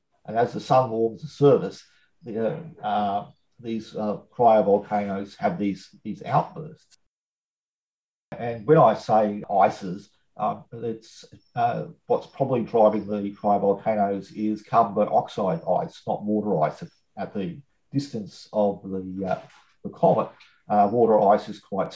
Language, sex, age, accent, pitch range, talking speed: English, male, 50-69, Australian, 100-120 Hz, 135 wpm